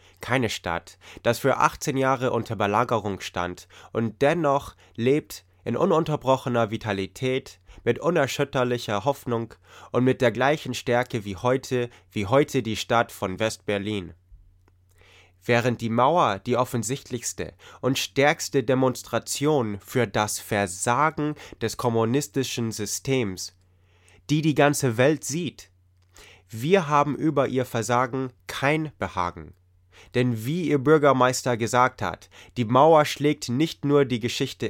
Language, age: English, 20-39